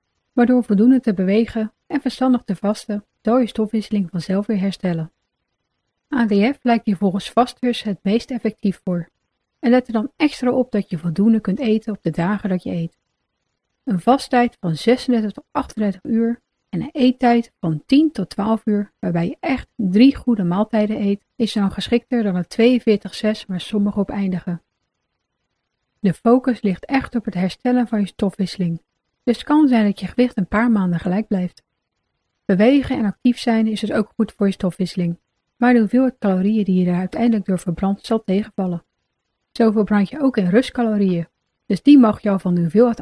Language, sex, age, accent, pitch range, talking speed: Dutch, female, 30-49, Dutch, 190-240 Hz, 185 wpm